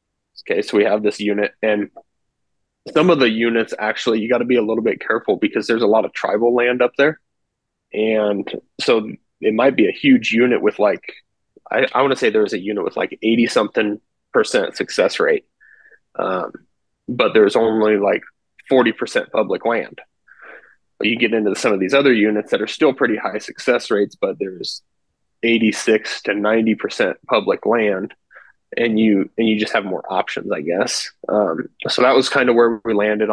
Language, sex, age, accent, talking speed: English, male, 20-39, American, 180 wpm